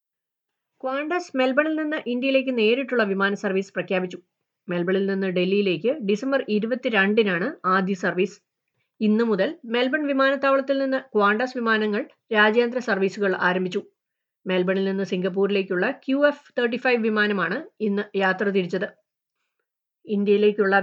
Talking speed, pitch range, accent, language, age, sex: 100 wpm, 185-245 Hz, native, Malayalam, 30-49, female